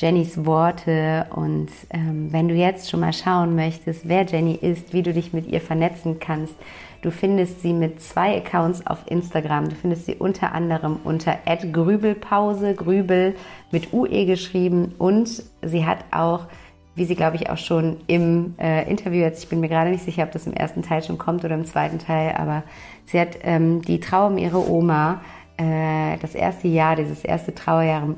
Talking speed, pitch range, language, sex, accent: 180 wpm, 160-180 Hz, German, female, German